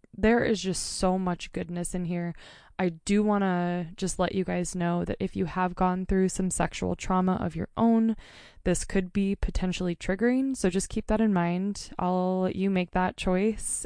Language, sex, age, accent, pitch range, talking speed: English, female, 20-39, American, 170-195 Hz, 200 wpm